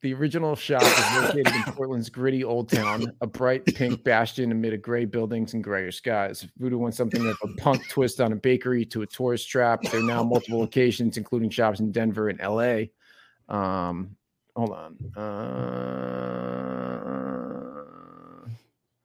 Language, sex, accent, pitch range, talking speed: English, male, American, 110-130 Hz, 160 wpm